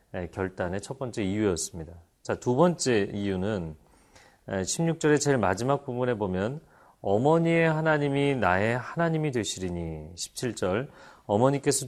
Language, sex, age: Korean, male, 40-59